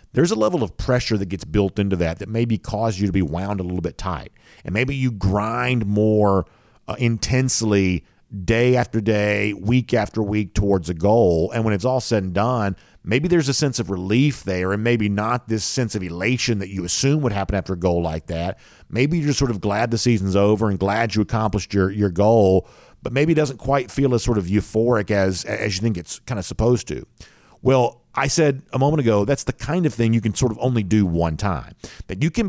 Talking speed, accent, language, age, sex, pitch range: 230 wpm, American, English, 50-69, male, 100-130 Hz